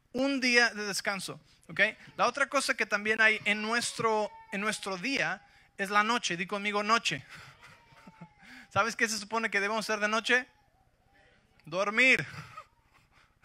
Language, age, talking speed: English, 20-39, 145 wpm